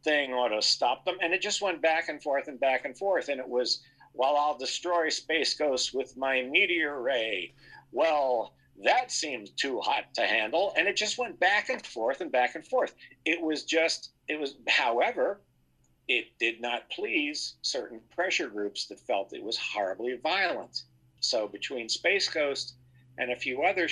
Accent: American